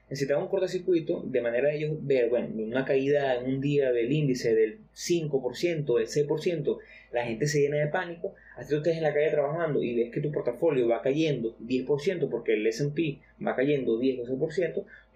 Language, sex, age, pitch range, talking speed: Spanish, male, 30-49, 130-170 Hz, 195 wpm